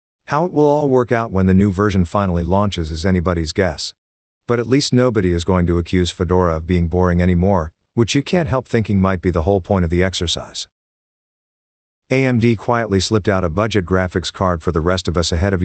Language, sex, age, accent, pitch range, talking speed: English, male, 50-69, American, 90-105 Hz, 215 wpm